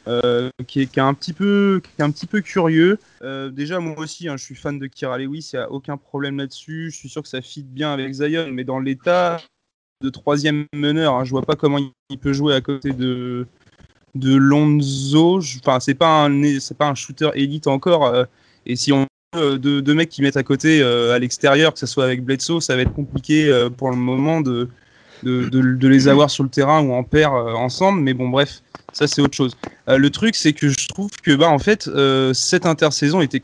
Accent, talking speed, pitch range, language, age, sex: French, 240 wpm, 130-155 Hz, French, 20-39, male